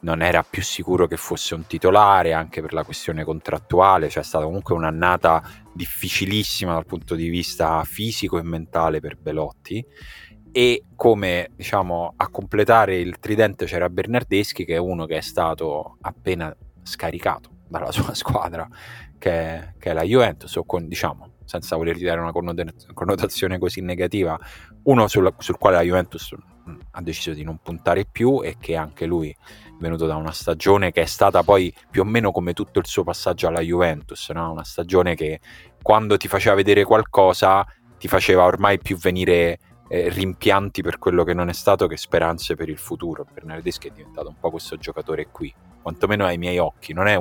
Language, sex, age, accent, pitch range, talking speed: Italian, male, 30-49, native, 80-95 Hz, 175 wpm